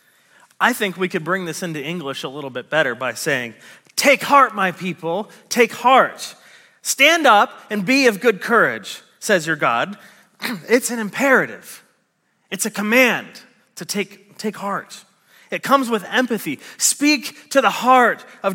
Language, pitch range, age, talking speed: English, 180-255 Hz, 30-49, 160 wpm